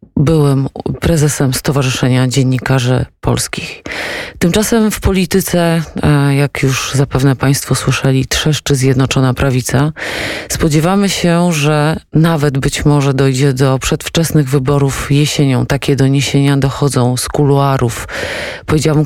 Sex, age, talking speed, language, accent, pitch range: female, 30-49, 105 wpm, Polish, native, 140-155 Hz